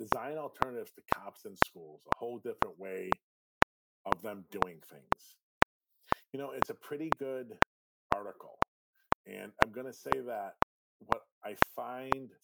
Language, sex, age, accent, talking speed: English, male, 40-59, American, 145 wpm